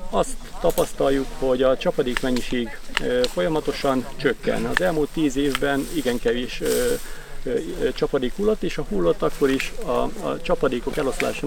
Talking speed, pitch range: 125 wpm, 135-175 Hz